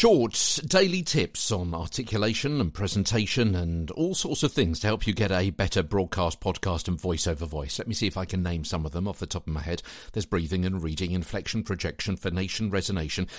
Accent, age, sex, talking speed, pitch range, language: British, 50-69, male, 220 wpm, 85-115 Hz, English